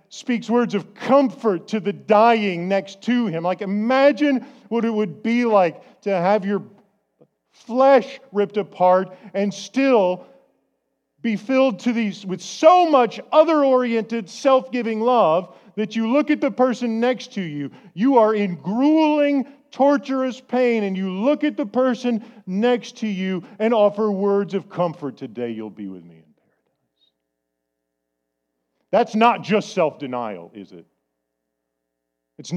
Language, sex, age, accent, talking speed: English, male, 40-59, American, 140 wpm